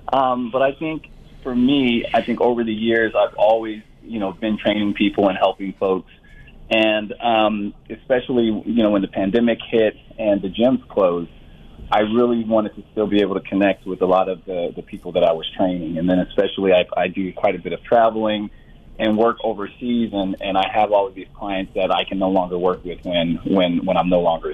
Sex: male